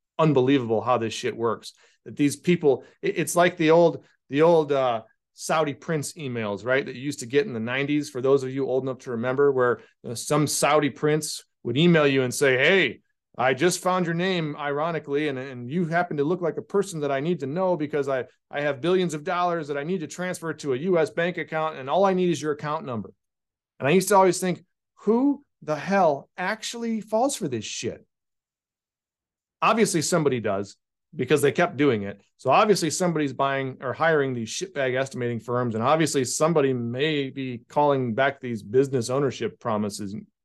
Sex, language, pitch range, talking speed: male, English, 125-165 Hz, 195 wpm